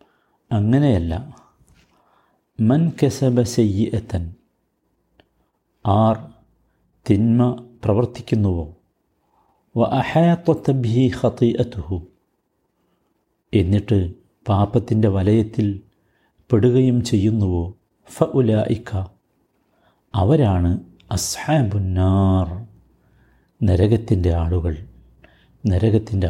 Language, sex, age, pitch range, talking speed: Malayalam, male, 60-79, 95-120 Hz, 50 wpm